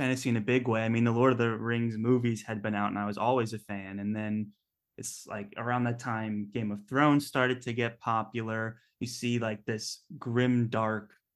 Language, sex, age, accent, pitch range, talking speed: English, male, 20-39, American, 110-125 Hz, 220 wpm